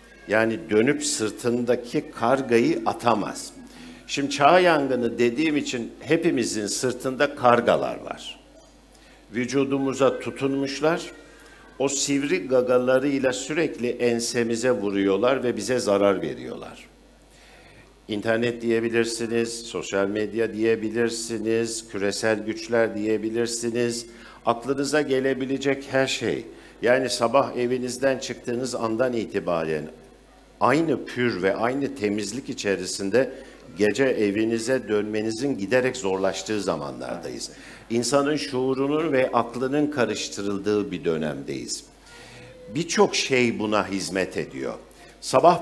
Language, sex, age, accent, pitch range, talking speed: Turkish, male, 60-79, native, 105-135 Hz, 90 wpm